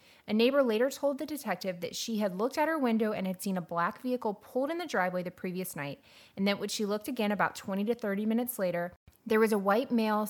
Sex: female